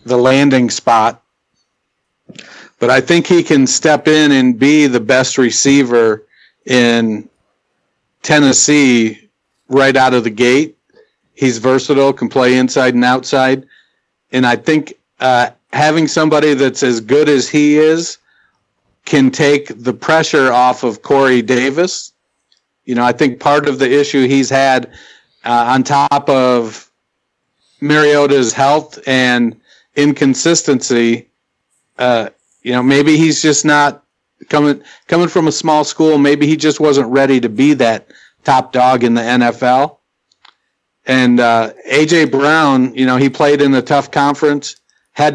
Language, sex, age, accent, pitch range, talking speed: English, male, 50-69, American, 125-150 Hz, 140 wpm